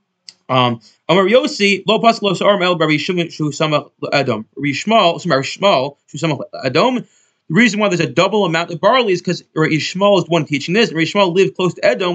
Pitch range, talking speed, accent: 155-195 Hz, 115 wpm, American